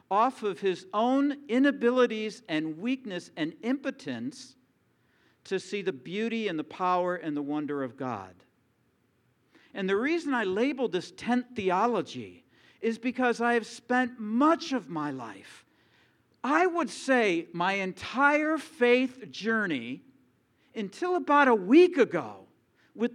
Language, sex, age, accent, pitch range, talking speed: English, male, 50-69, American, 180-270 Hz, 130 wpm